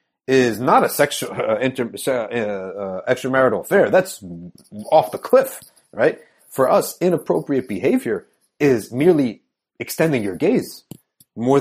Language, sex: English, male